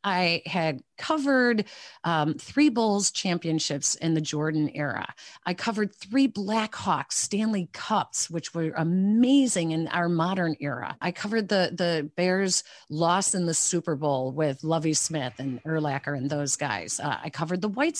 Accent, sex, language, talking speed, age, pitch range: American, female, English, 155 wpm, 40-59, 155-210 Hz